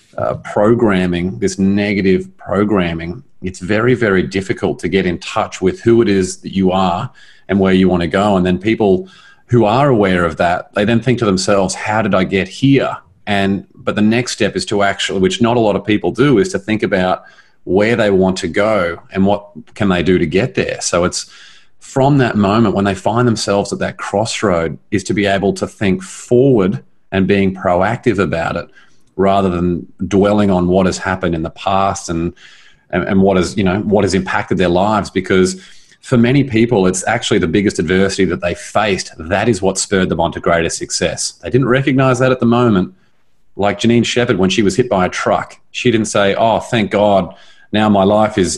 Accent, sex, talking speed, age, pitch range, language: Australian, male, 210 wpm, 30-49, 95-110 Hz, English